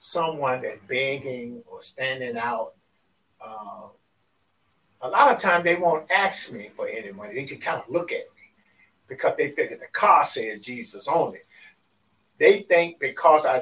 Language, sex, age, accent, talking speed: English, male, 50-69, American, 165 wpm